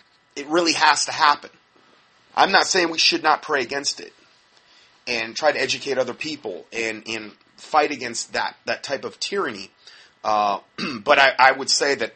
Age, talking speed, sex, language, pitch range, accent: 30-49, 180 wpm, male, English, 105-140 Hz, American